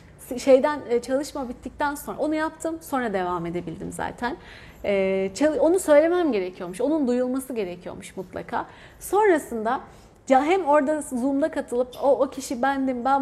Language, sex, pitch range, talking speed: Turkish, female, 215-270 Hz, 125 wpm